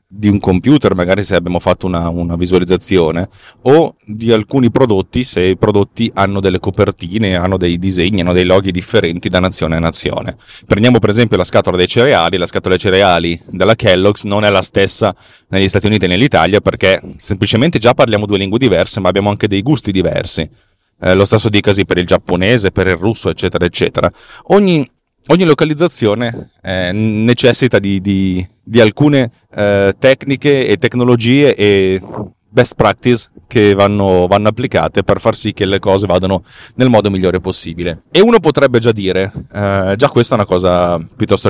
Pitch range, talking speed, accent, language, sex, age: 95-120 Hz, 175 wpm, native, Italian, male, 30-49